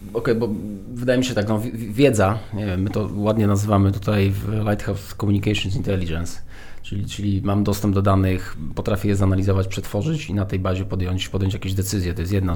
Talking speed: 195 wpm